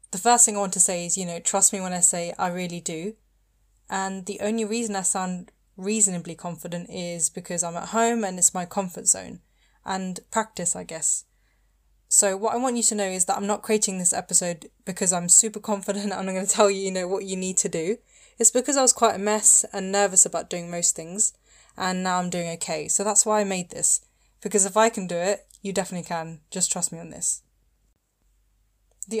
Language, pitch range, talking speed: English, 175-210 Hz, 225 wpm